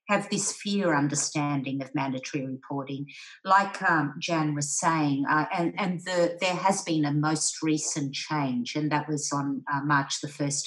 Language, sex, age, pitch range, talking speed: English, female, 50-69, 140-160 Hz, 170 wpm